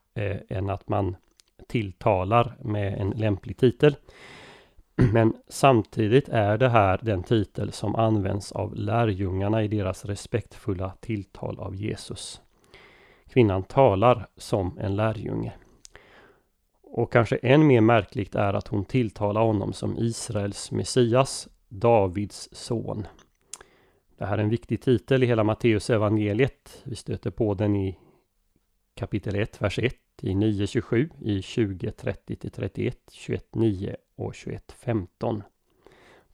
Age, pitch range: 30-49, 100-120 Hz